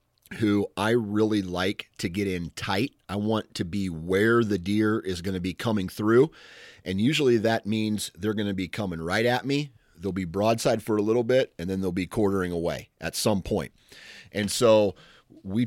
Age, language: 30-49, English